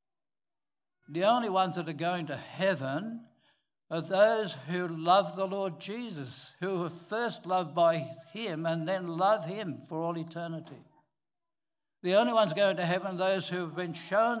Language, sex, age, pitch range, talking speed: English, male, 60-79, 160-200 Hz, 165 wpm